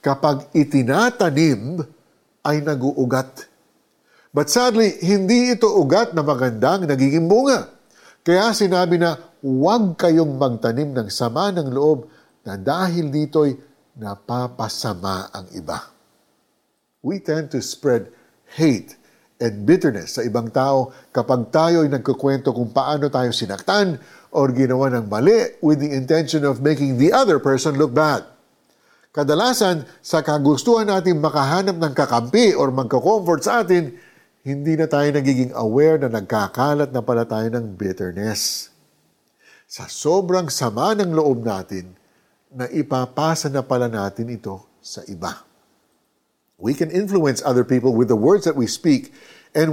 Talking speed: 130 wpm